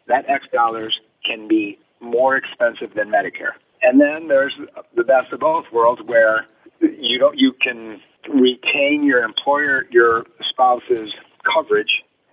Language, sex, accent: English, male, American